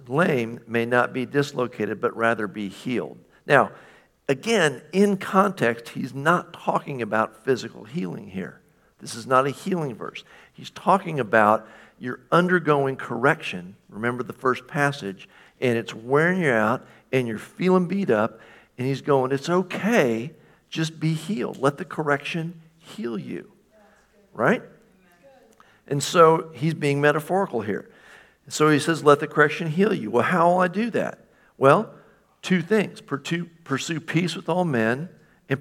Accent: American